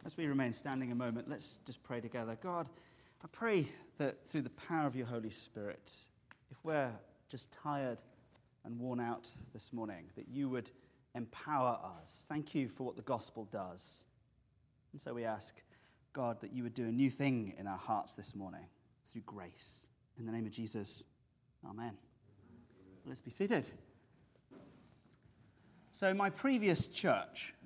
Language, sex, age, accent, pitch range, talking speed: English, male, 30-49, British, 120-170 Hz, 165 wpm